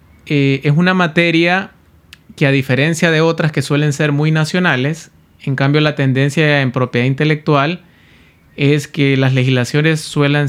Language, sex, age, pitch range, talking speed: Spanish, male, 30-49, 125-160 Hz, 150 wpm